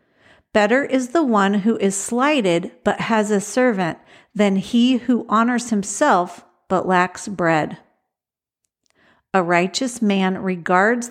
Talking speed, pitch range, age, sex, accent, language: 125 wpm, 190-240 Hz, 50-69, female, American, English